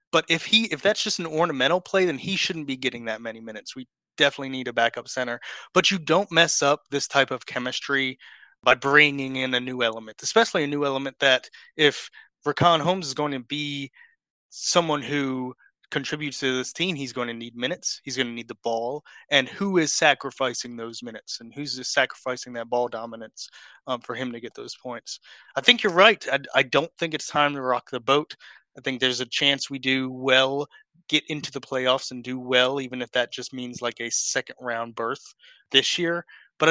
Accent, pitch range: American, 125-155 Hz